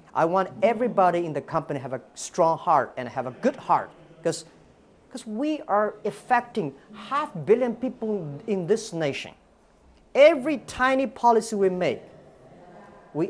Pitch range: 145-210 Hz